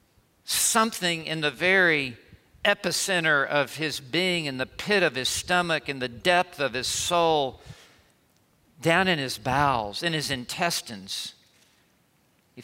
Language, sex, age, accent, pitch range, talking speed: English, male, 50-69, American, 145-215 Hz, 135 wpm